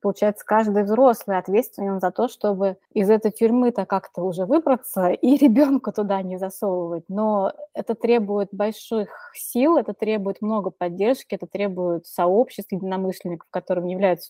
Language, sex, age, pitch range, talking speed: Russian, female, 20-39, 185-230 Hz, 140 wpm